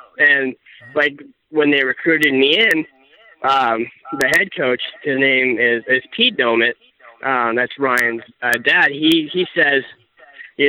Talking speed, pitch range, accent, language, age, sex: 145 wpm, 130-150 Hz, American, English, 20-39, male